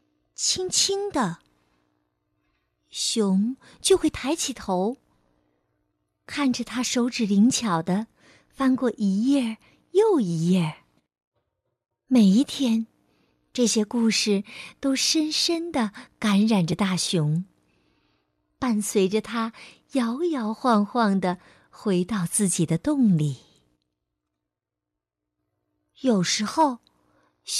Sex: female